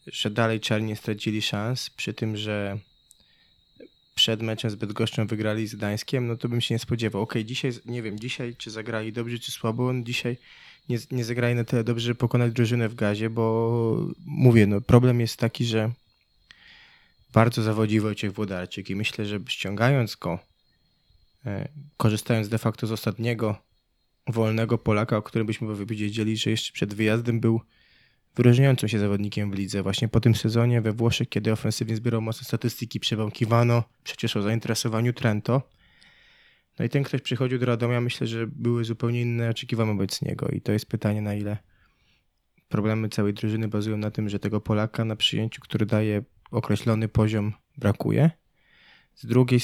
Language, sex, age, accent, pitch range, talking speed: Polish, male, 20-39, native, 110-120 Hz, 165 wpm